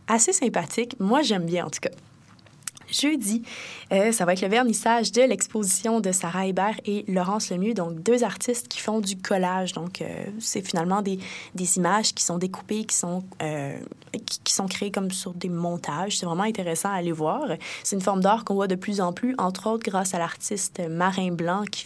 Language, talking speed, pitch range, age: French, 205 wpm, 180-230 Hz, 20-39